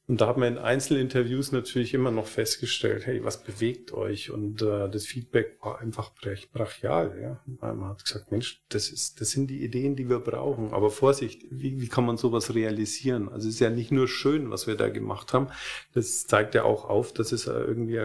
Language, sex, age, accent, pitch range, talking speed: German, male, 40-59, German, 110-135 Hz, 195 wpm